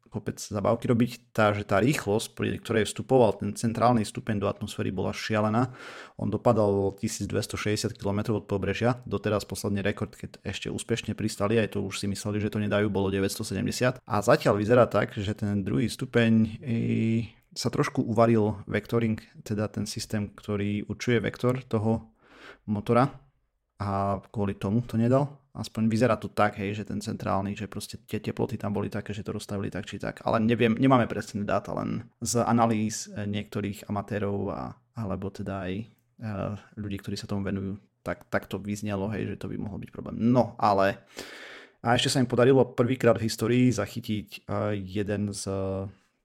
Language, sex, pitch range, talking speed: Slovak, male, 100-115 Hz, 170 wpm